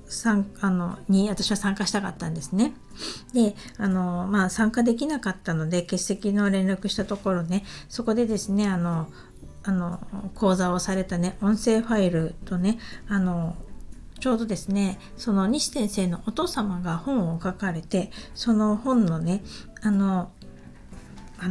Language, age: Japanese, 50-69